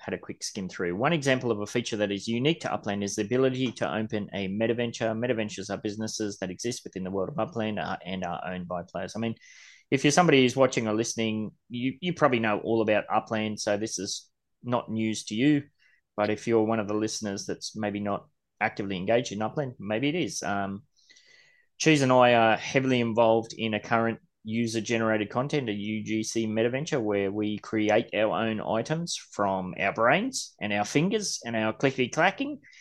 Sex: male